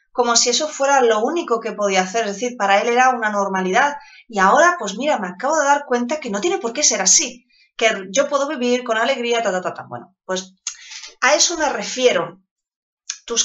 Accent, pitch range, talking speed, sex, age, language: Spanish, 205-265 Hz, 220 wpm, female, 20-39, Spanish